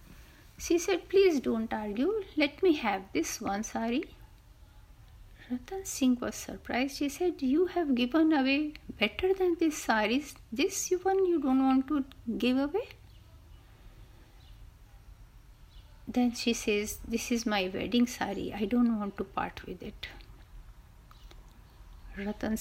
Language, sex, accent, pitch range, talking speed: Hindi, female, native, 185-265 Hz, 130 wpm